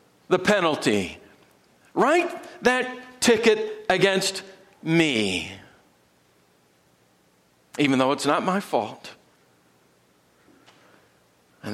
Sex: male